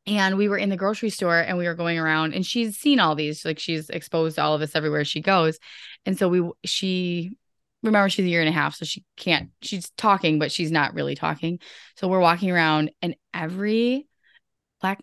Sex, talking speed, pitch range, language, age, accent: female, 220 wpm, 165-205 Hz, English, 20-39, American